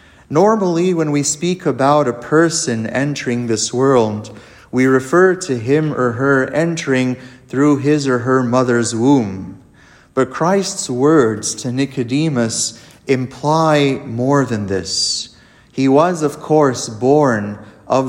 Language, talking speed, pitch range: English, 125 wpm, 120-150 Hz